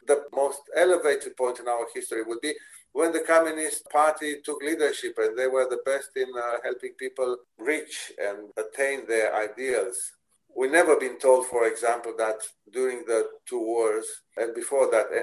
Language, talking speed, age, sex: English, 170 wpm, 50-69, male